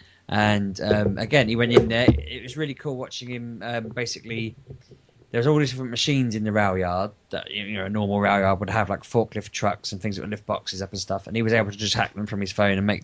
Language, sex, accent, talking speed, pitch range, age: English, male, British, 270 wpm, 100-115 Hz, 20-39